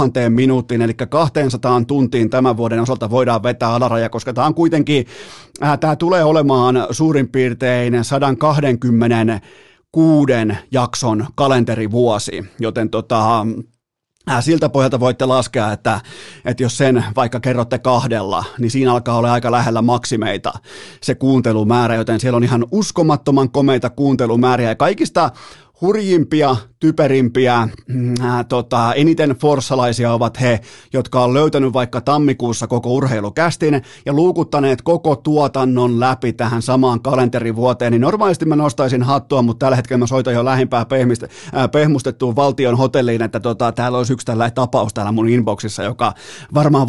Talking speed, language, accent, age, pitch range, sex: 135 wpm, Finnish, native, 30-49, 120-140 Hz, male